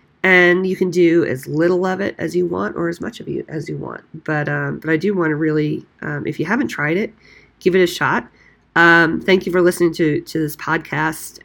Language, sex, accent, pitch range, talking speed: English, female, American, 150-170 Hz, 240 wpm